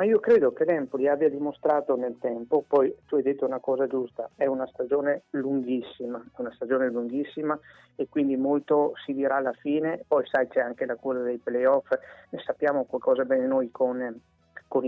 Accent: native